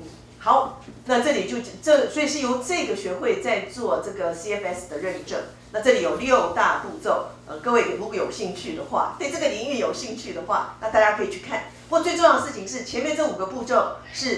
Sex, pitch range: female, 195-270 Hz